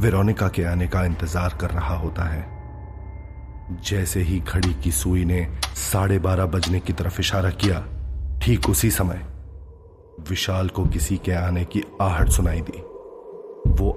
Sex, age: male, 30-49